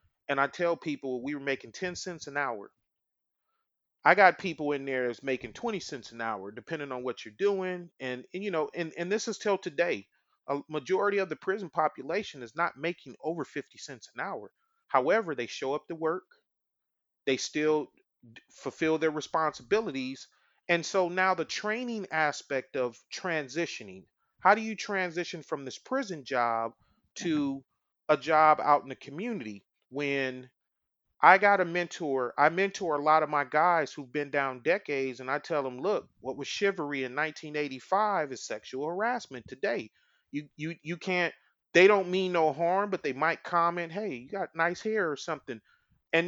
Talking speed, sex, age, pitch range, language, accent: 175 wpm, male, 30-49, 145-190 Hz, English, American